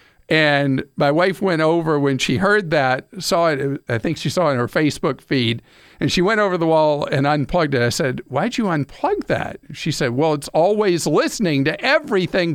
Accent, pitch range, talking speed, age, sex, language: American, 130-170 Hz, 205 wpm, 50-69, male, English